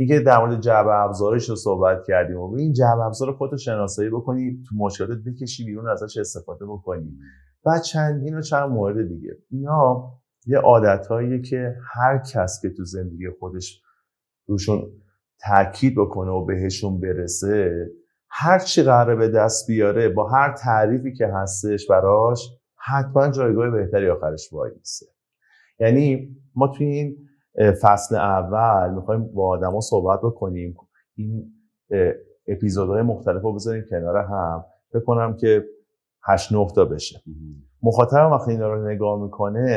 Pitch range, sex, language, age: 95-125 Hz, male, Persian, 30-49